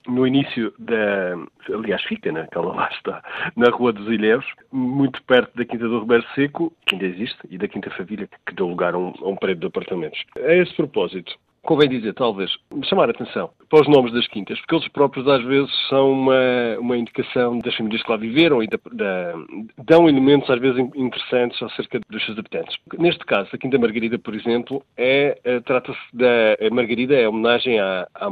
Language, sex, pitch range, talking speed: Portuguese, male, 110-135 Hz, 200 wpm